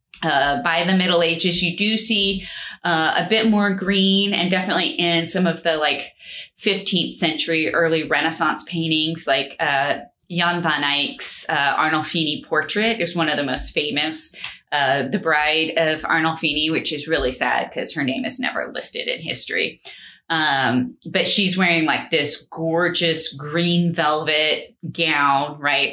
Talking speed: 155 wpm